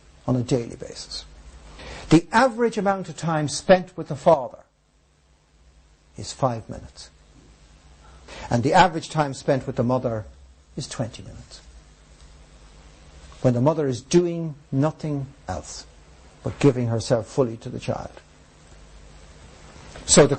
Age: 60-79